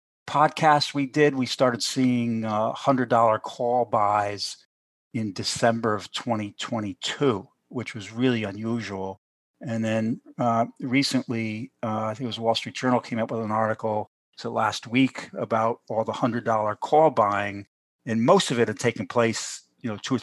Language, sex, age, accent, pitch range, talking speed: English, male, 50-69, American, 105-125 Hz, 170 wpm